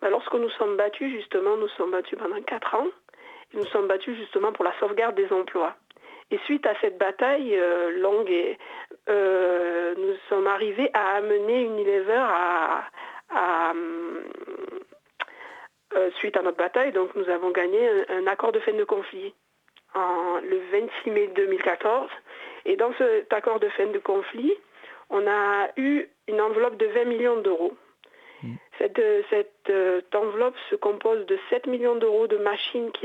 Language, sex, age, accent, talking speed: French, female, 50-69, French, 165 wpm